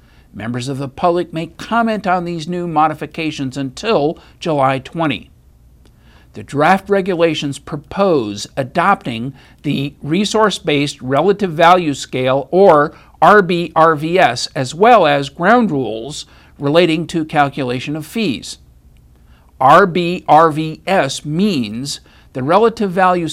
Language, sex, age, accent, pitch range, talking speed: English, male, 50-69, American, 135-185 Hz, 105 wpm